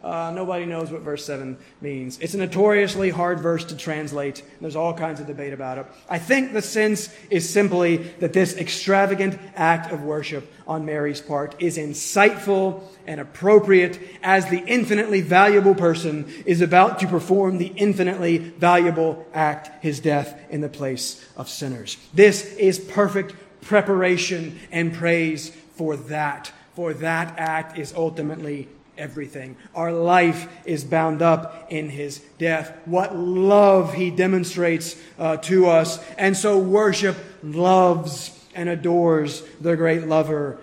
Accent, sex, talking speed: American, male, 145 wpm